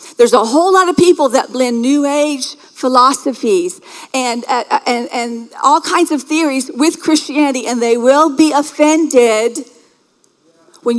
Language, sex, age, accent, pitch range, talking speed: English, female, 50-69, American, 255-345 Hz, 145 wpm